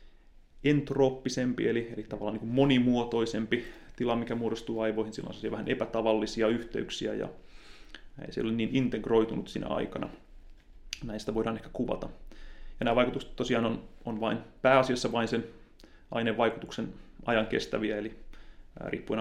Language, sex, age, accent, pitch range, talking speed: Finnish, male, 30-49, native, 110-120 Hz, 130 wpm